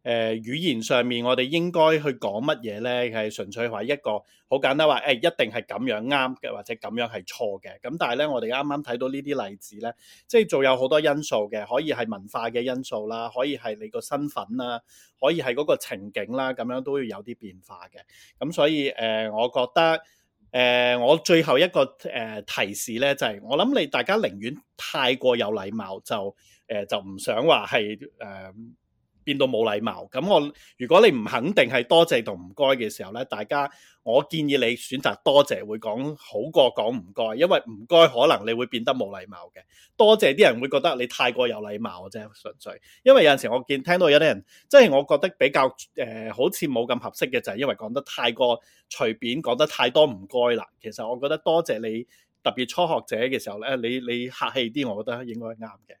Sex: male